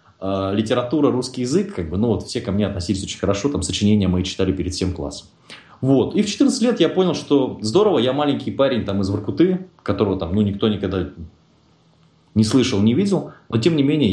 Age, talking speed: 20-39, 205 wpm